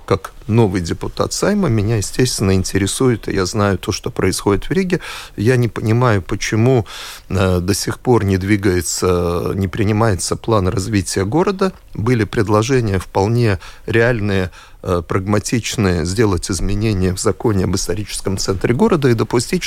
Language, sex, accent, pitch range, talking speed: Russian, male, native, 100-135 Hz, 135 wpm